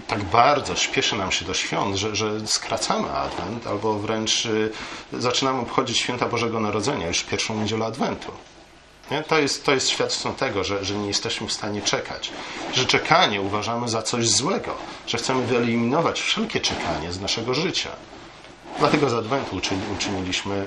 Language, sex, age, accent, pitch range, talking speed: Polish, male, 40-59, native, 95-115 Hz, 165 wpm